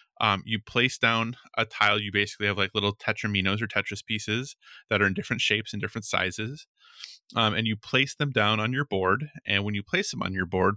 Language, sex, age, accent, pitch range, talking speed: English, male, 20-39, American, 100-120 Hz, 225 wpm